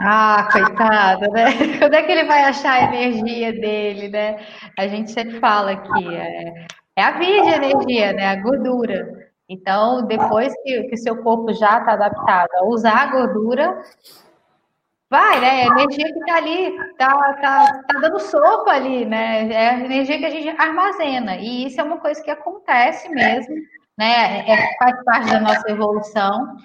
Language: Portuguese